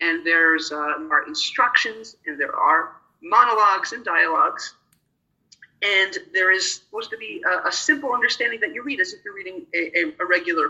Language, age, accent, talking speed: English, 40-59, American, 180 wpm